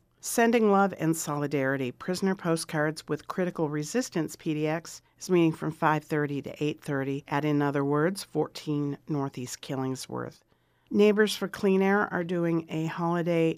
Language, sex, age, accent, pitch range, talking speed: English, female, 50-69, American, 145-190 Hz, 135 wpm